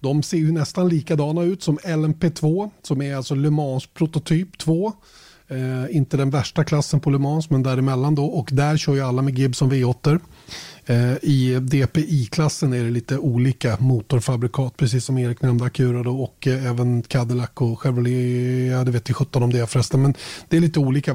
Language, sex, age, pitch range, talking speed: Swedish, male, 30-49, 130-160 Hz, 185 wpm